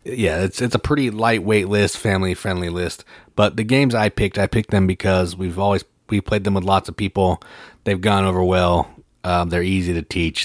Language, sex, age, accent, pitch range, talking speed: English, male, 30-49, American, 90-105 Hz, 205 wpm